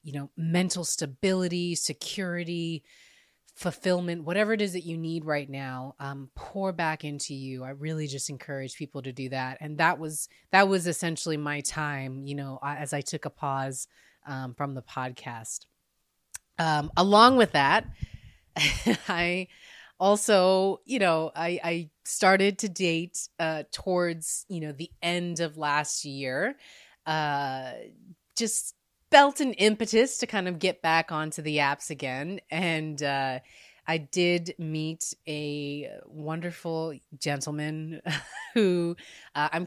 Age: 30-49